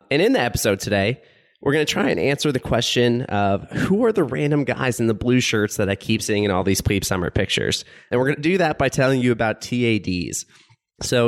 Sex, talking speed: male, 240 wpm